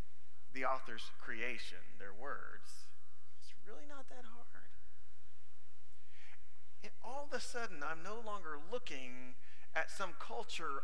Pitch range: 90-120 Hz